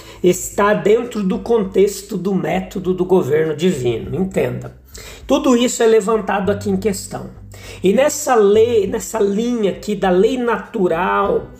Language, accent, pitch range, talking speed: Portuguese, Brazilian, 180-240 Hz, 130 wpm